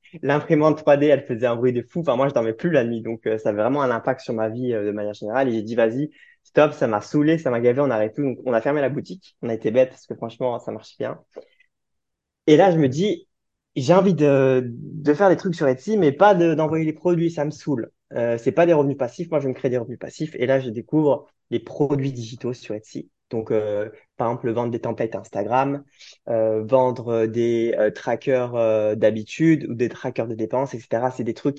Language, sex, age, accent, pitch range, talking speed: French, male, 20-39, French, 115-145 Hz, 245 wpm